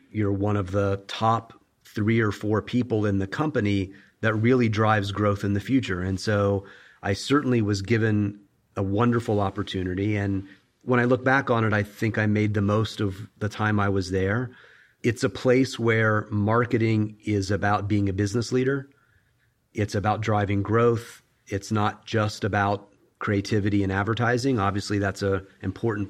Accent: American